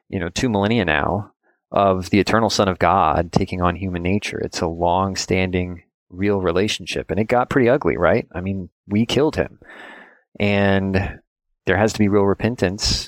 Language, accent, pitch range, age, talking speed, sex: English, American, 90-100 Hz, 30-49, 175 wpm, male